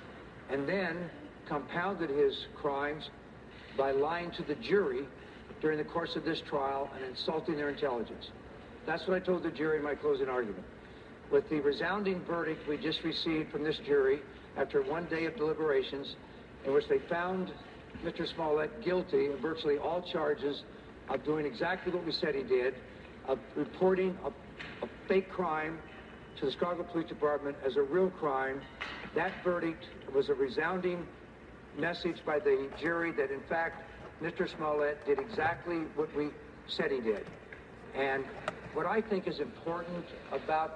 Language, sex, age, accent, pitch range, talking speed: English, male, 60-79, American, 150-185 Hz, 160 wpm